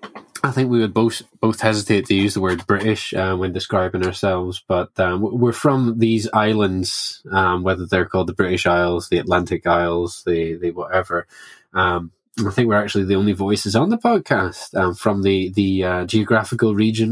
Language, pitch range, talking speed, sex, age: English, 90-110 Hz, 185 wpm, male, 20-39